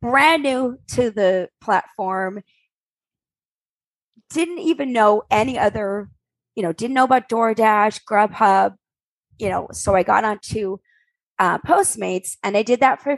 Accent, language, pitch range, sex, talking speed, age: American, English, 200-260 Hz, female, 145 wpm, 20-39